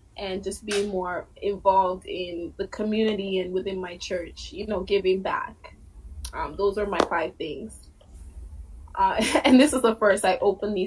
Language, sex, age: English, female, 20-39